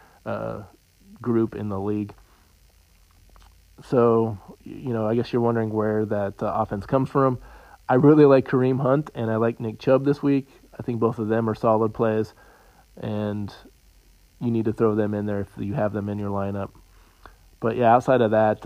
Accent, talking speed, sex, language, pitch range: American, 185 wpm, male, English, 100-120 Hz